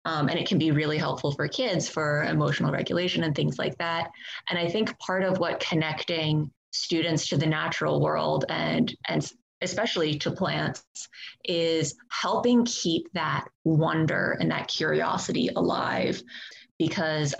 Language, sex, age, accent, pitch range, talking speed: English, female, 20-39, American, 155-175 Hz, 150 wpm